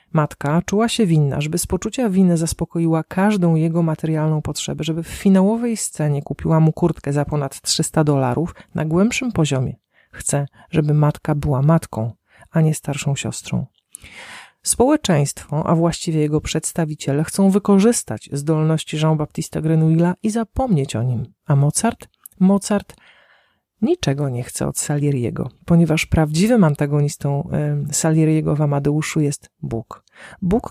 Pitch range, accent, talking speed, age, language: 145-175 Hz, native, 135 wpm, 40-59, Polish